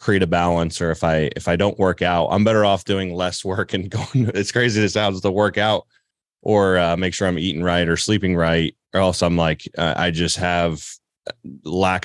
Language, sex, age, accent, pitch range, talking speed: English, male, 30-49, American, 85-95 Hz, 230 wpm